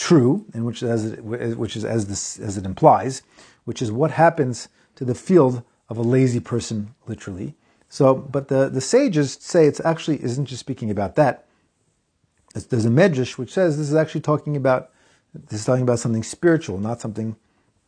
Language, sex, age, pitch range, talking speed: English, male, 40-59, 110-150 Hz, 190 wpm